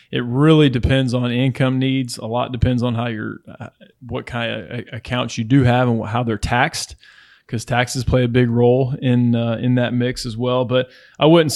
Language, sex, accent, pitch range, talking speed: English, male, American, 115-130 Hz, 205 wpm